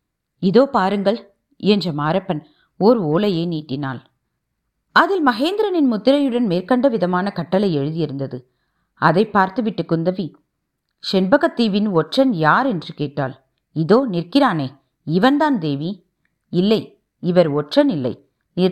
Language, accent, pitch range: Tamil, native, 170-260 Hz